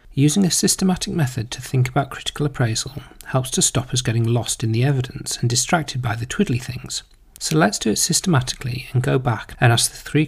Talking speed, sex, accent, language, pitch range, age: 210 wpm, male, British, English, 125-155 Hz, 40-59